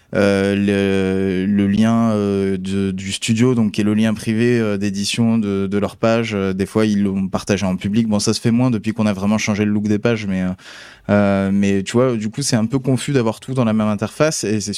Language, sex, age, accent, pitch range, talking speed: French, male, 20-39, French, 100-115 Hz, 245 wpm